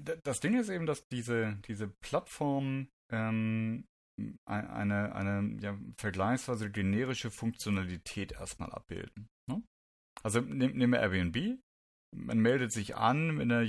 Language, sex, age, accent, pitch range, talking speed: German, male, 30-49, German, 100-125 Hz, 125 wpm